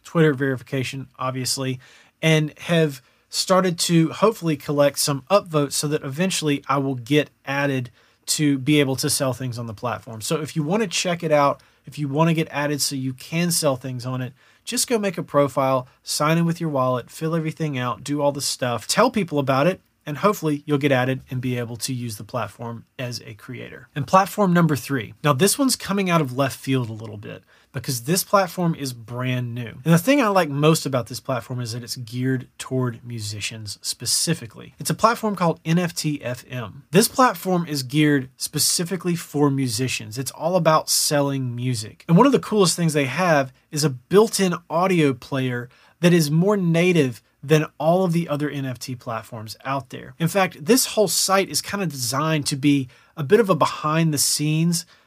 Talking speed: 200 wpm